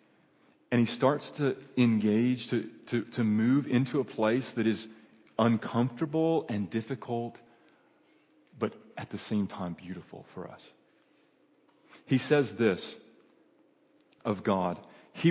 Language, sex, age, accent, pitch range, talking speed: English, male, 30-49, American, 115-155 Hz, 120 wpm